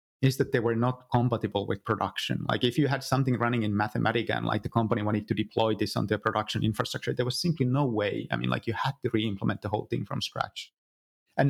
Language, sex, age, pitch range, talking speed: English, male, 30-49, 105-125 Hz, 240 wpm